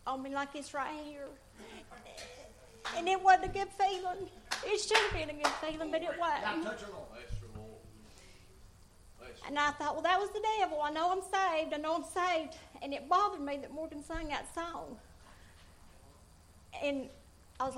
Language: English